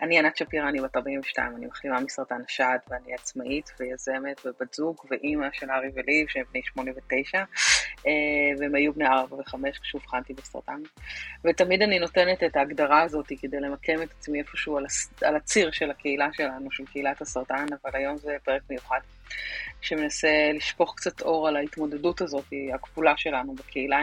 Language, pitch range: Hebrew, 140-165 Hz